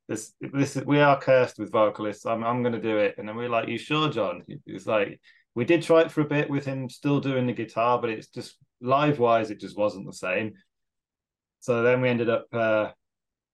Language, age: English, 20-39